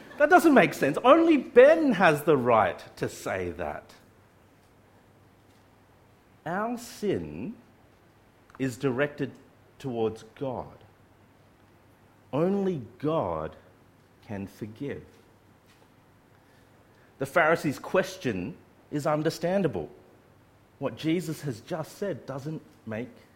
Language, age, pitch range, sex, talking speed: English, 50-69, 105-150 Hz, male, 85 wpm